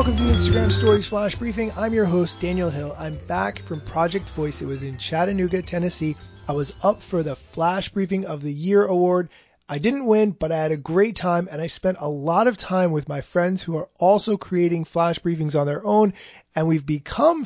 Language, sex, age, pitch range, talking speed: English, male, 20-39, 155-195 Hz, 215 wpm